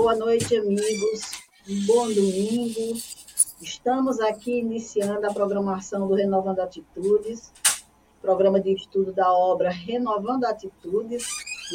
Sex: female